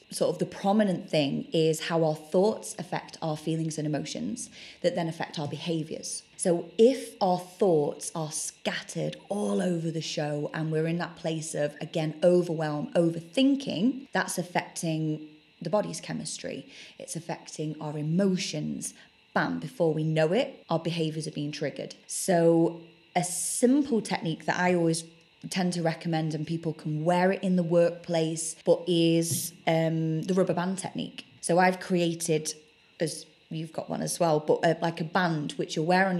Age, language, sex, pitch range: 20-39, English, female, 160-185 Hz